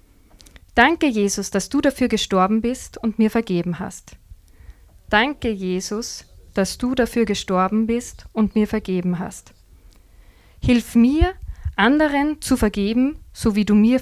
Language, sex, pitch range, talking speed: German, female, 175-235 Hz, 135 wpm